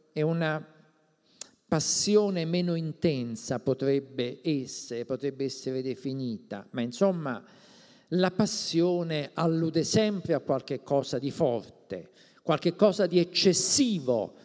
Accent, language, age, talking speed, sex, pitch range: native, Italian, 50-69, 105 wpm, male, 145-185 Hz